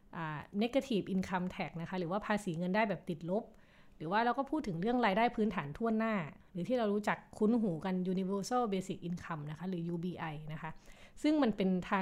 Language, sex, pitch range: Thai, female, 175-220 Hz